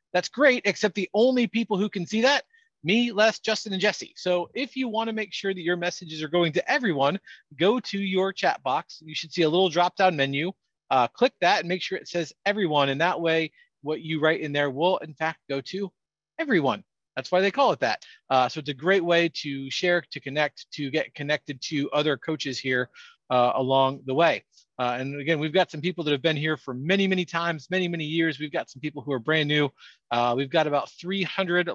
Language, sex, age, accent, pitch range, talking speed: English, male, 40-59, American, 140-180 Hz, 230 wpm